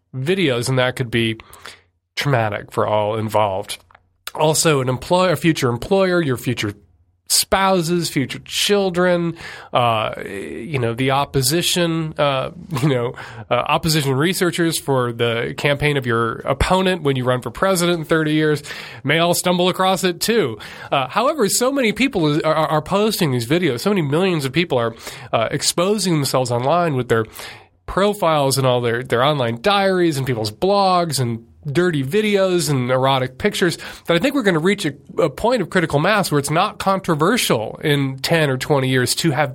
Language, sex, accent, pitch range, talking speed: English, male, American, 125-175 Hz, 170 wpm